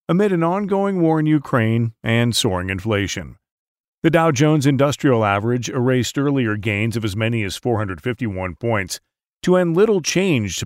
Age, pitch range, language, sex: 40-59, 110-150 Hz, English, male